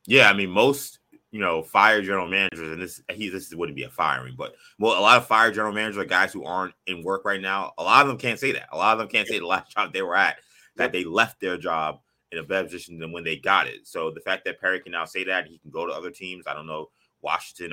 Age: 20-39